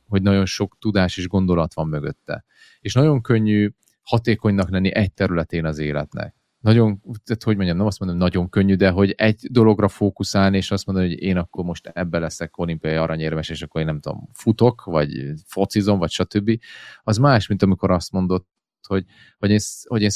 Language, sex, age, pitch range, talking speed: Hungarian, male, 30-49, 85-105 Hz, 190 wpm